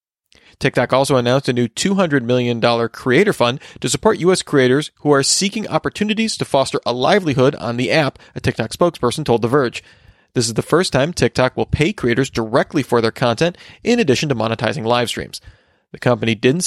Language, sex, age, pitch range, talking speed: English, male, 30-49, 120-155 Hz, 185 wpm